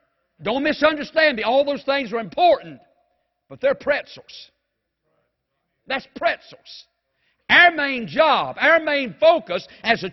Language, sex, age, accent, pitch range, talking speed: English, male, 60-79, American, 220-275 Hz, 125 wpm